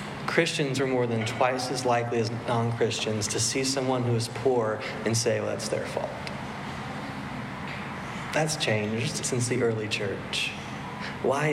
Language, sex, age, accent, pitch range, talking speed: English, male, 30-49, American, 110-125 Hz, 145 wpm